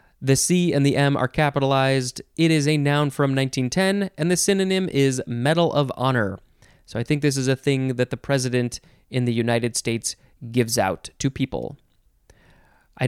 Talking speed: 180 wpm